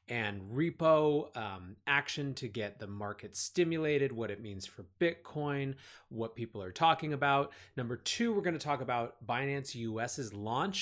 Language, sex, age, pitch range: English, male, 30-49, 115-145 Hz